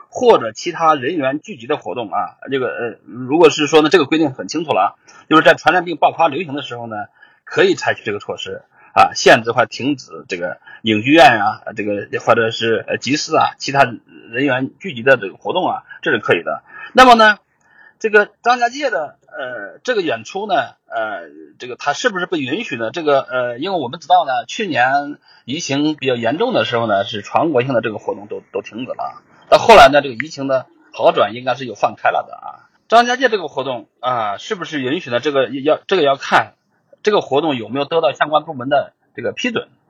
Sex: male